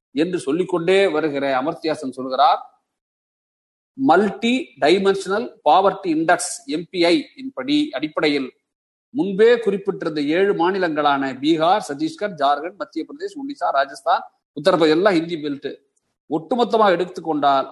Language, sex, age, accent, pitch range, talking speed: Tamil, male, 40-59, native, 150-240 Hz, 95 wpm